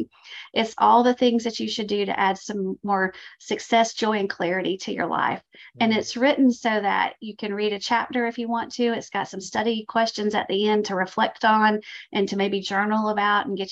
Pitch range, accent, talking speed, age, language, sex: 195-230 Hz, American, 225 wpm, 40-59, English, female